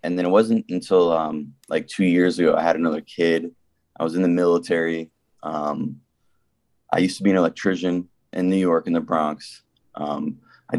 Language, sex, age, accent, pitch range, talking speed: English, male, 20-39, American, 80-95 Hz, 190 wpm